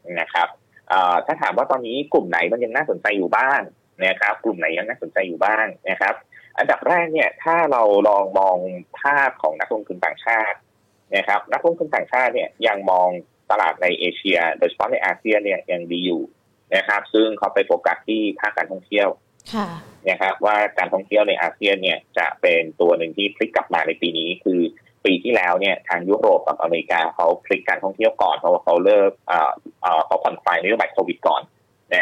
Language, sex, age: Thai, male, 20-39